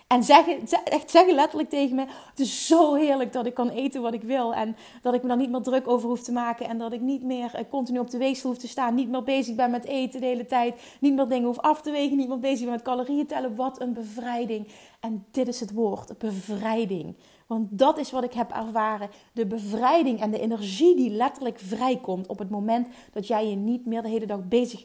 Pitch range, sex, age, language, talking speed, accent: 215-255 Hz, female, 30-49, Dutch, 245 wpm, Dutch